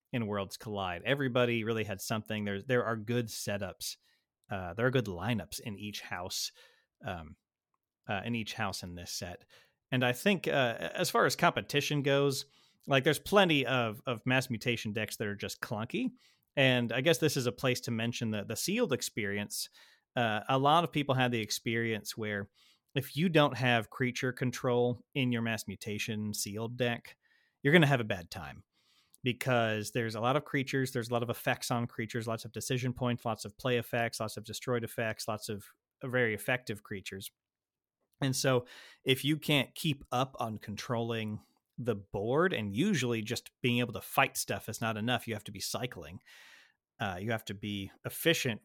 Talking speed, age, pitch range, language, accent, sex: 185 wpm, 30-49, 110-130 Hz, English, American, male